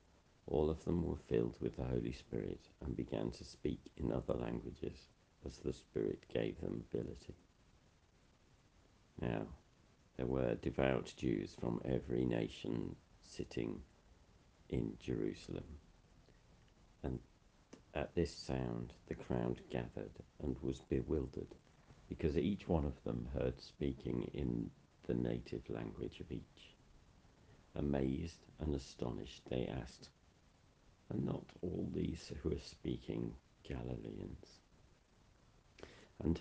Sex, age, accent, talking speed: male, 60-79, British, 115 wpm